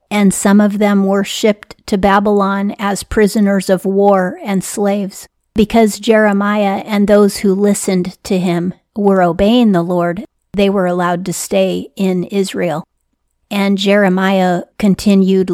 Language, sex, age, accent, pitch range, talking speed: English, female, 40-59, American, 185-200 Hz, 140 wpm